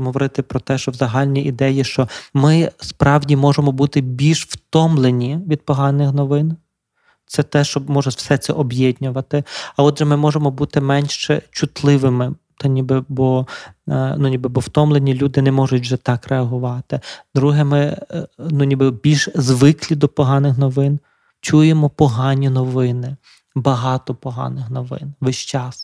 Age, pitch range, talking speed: 20-39, 130-145 Hz, 140 wpm